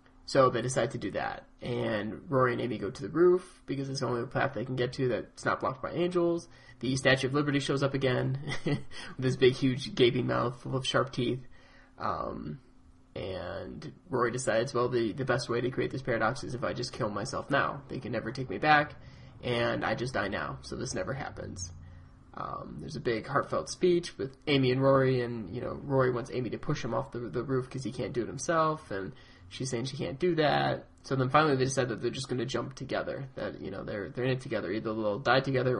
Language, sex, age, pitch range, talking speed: English, male, 20-39, 120-135 Hz, 235 wpm